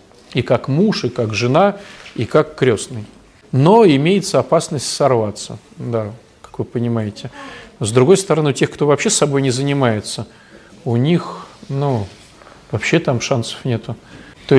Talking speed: 150 wpm